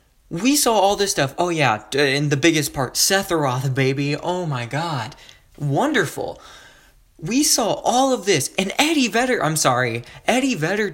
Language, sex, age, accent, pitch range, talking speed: English, male, 20-39, American, 145-230 Hz, 160 wpm